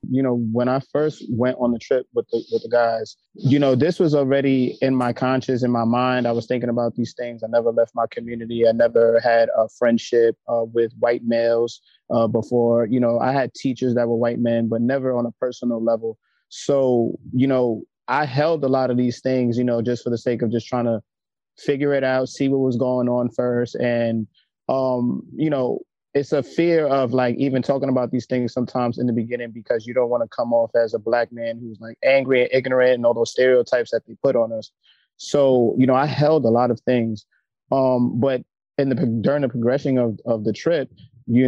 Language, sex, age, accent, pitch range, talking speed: English, male, 20-39, American, 115-130 Hz, 225 wpm